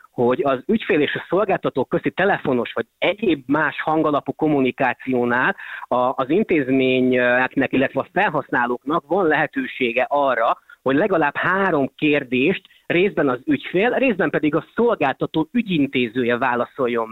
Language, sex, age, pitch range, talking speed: Hungarian, male, 30-49, 125-160 Hz, 125 wpm